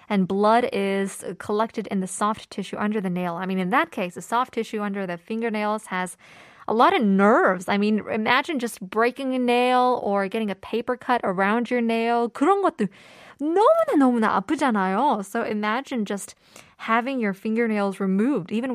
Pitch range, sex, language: 200-265 Hz, female, Korean